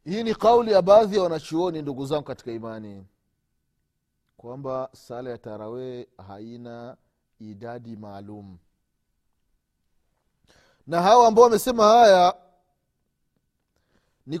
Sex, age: male, 30-49